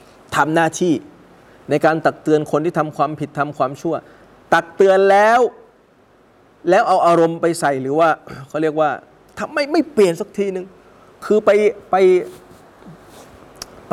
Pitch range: 135-180 Hz